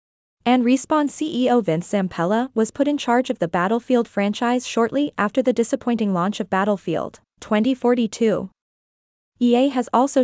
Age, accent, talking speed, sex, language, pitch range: 20-39, American, 140 wpm, female, English, 200-250 Hz